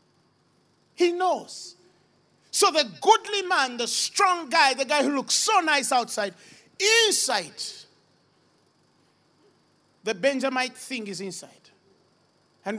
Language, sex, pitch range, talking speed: English, male, 230-300 Hz, 110 wpm